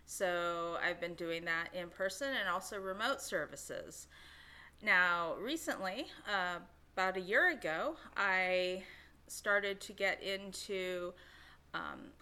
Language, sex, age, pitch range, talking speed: English, female, 30-49, 170-210 Hz, 120 wpm